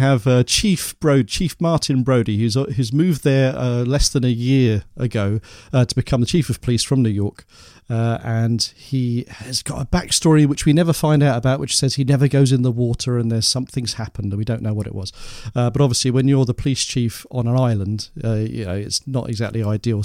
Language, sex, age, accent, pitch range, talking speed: English, male, 40-59, British, 115-140 Hz, 235 wpm